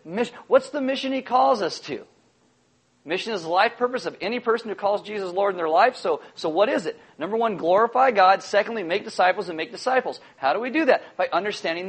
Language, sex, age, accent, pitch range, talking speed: English, male, 40-59, American, 170-220 Hz, 220 wpm